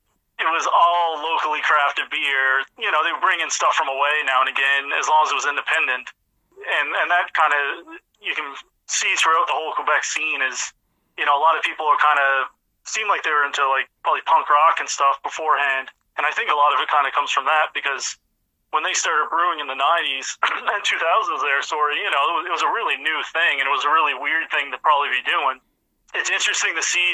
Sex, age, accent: male, 30-49, American